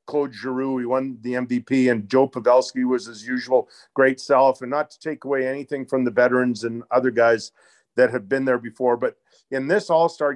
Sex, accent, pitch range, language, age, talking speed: male, American, 125-150 Hz, English, 50-69, 205 wpm